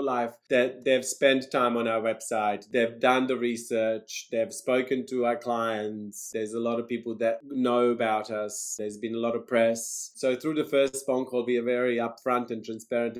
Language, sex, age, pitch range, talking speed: English, male, 30-49, 115-130 Hz, 200 wpm